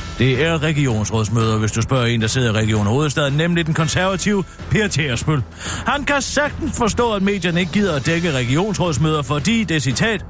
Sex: male